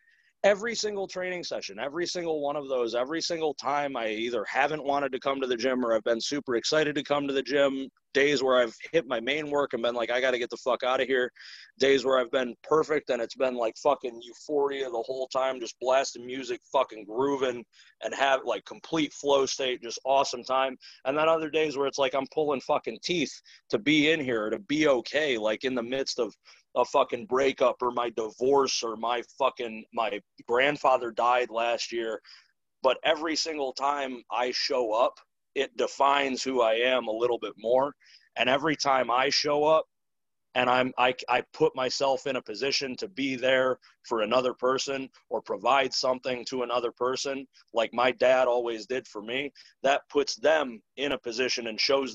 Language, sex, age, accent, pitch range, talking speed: English, male, 30-49, American, 125-145 Hz, 200 wpm